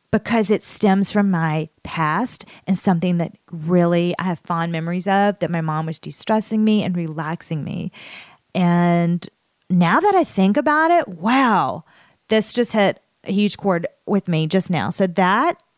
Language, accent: English, American